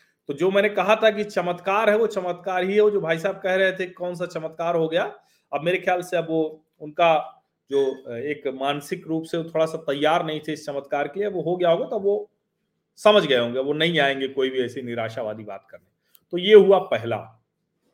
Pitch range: 150-205 Hz